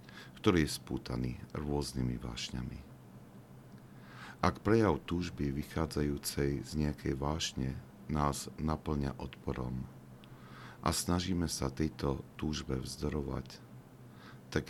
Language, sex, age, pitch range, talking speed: Slovak, male, 50-69, 65-75 Hz, 90 wpm